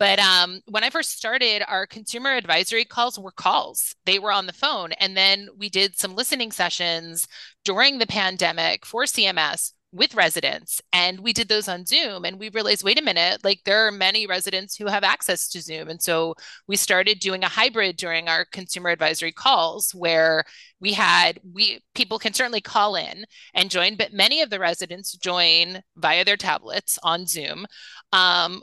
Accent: American